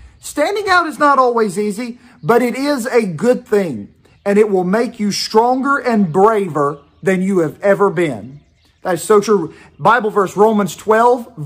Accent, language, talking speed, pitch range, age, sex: American, English, 175 wpm, 165-235 Hz, 40-59, male